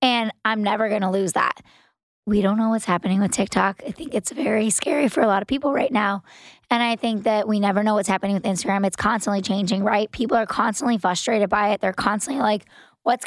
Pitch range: 205-240 Hz